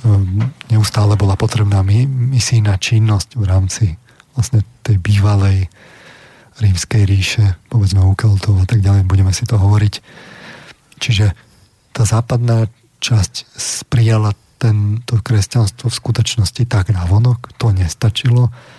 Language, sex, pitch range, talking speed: Slovak, male, 100-115 Hz, 110 wpm